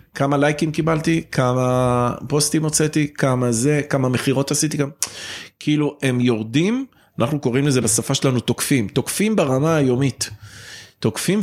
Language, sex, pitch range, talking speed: Hebrew, male, 110-145 Hz, 125 wpm